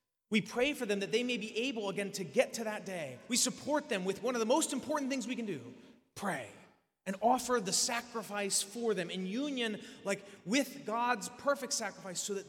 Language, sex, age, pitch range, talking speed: English, male, 30-49, 195-245 Hz, 210 wpm